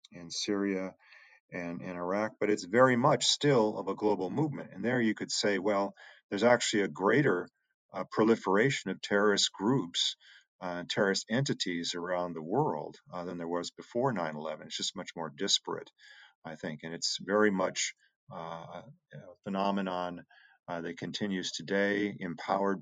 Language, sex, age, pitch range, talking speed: English, male, 40-59, 85-105 Hz, 160 wpm